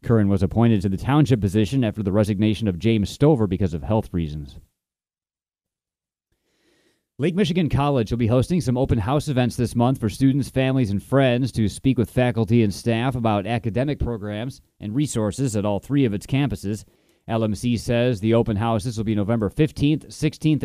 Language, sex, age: English, male, 30-49